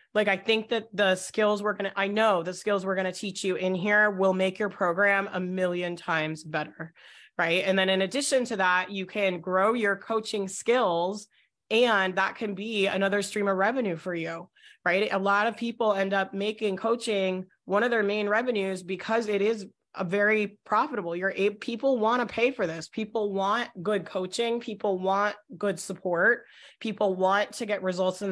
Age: 30-49